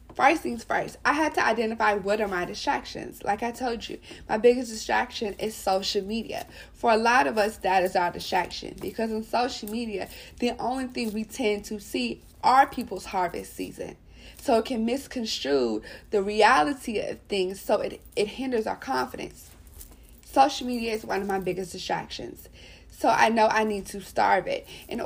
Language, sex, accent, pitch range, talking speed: English, female, American, 200-240 Hz, 180 wpm